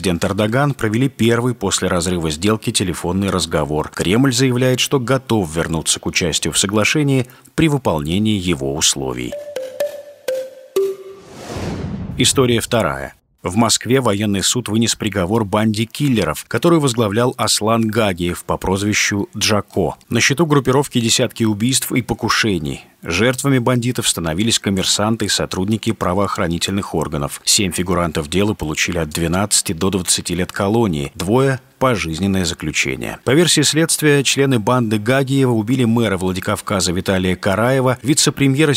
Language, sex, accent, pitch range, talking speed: Russian, male, native, 95-130 Hz, 120 wpm